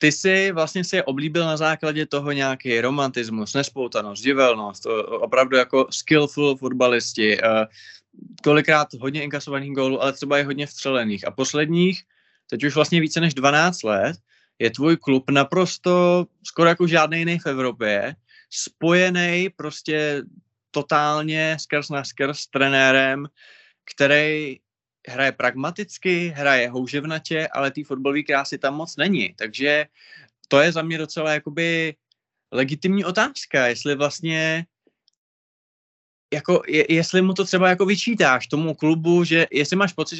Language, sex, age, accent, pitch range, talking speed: Czech, male, 20-39, native, 135-165 Hz, 135 wpm